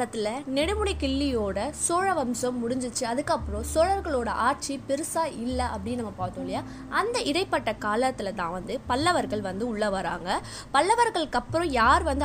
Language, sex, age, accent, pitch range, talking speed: Tamil, female, 20-39, native, 230-310 Hz, 95 wpm